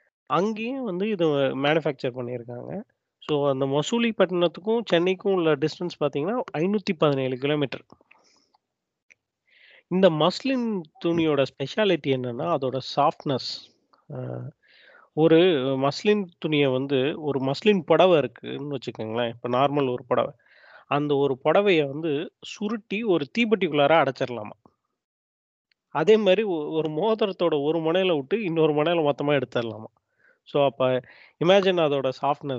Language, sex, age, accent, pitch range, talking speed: Tamil, male, 20-39, native, 135-185 Hz, 105 wpm